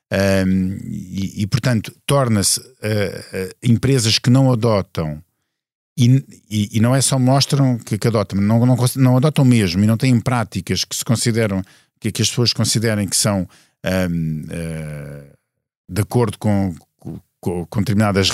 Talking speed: 135 wpm